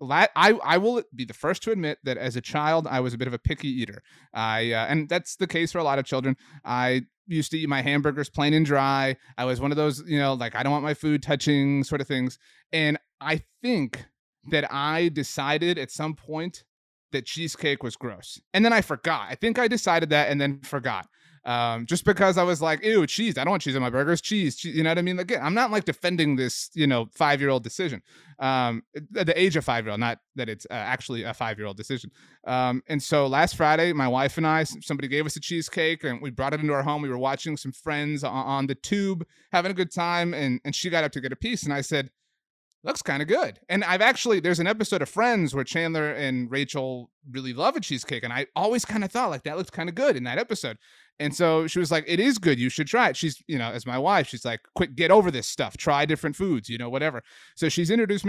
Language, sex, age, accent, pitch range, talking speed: English, male, 30-49, American, 130-165 Hz, 250 wpm